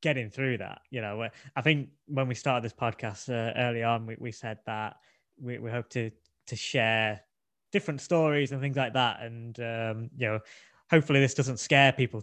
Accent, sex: British, male